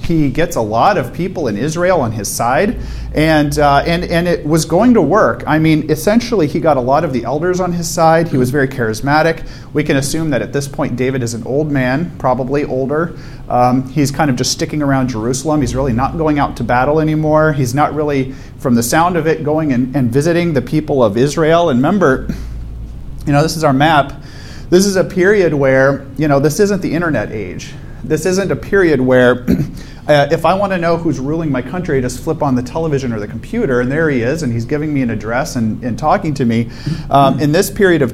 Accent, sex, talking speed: American, male, 230 wpm